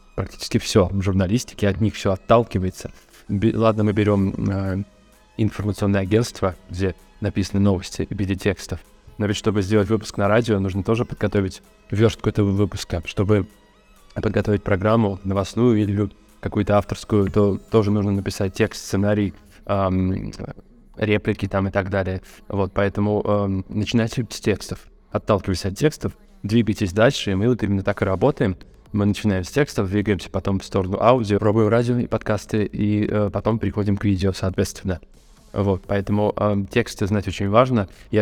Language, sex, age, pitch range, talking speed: Russian, male, 20-39, 100-110 Hz, 155 wpm